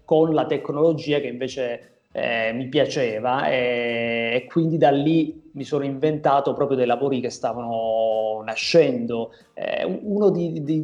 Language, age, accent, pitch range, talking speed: Italian, 30-49, native, 130-160 Hz, 145 wpm